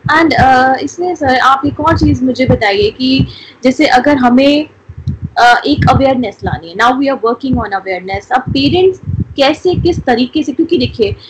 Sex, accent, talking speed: female, Indian, 115 wpm